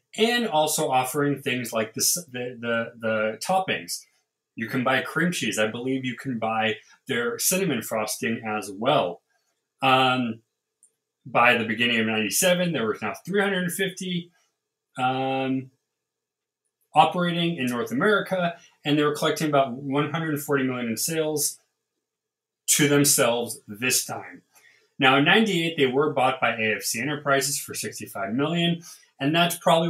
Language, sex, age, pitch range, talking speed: English, male, 30-49, 115-160 Hz, 130 wpm